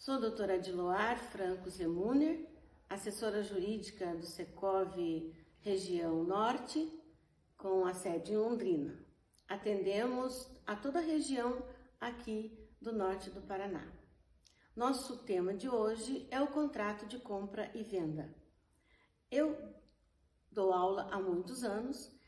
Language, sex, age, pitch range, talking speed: Portuguese, female, 50-69, 200-290 Hz, 120 wpm